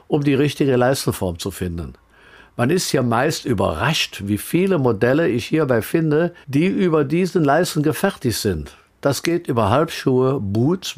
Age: 50-69